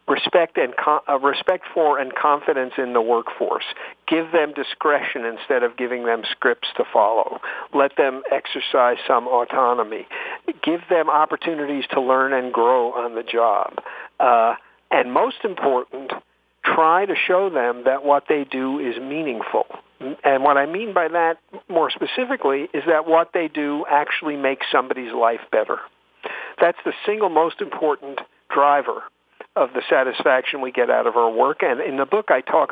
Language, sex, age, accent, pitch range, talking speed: English, male, 50-69, American, 130-165 Hz, 160 wpm